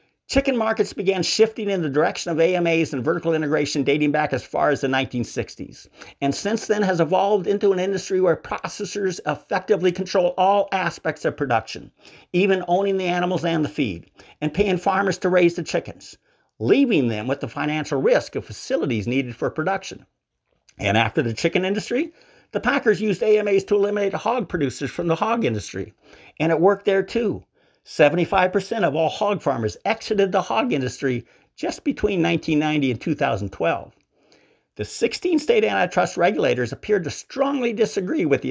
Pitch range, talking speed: 150-210 Hz, 170 wpm